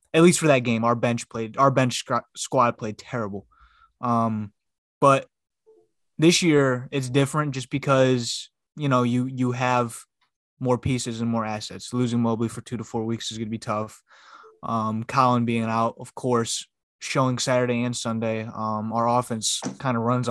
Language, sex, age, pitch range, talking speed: English, male, 20-39, 115-130 Hz, 175 wpm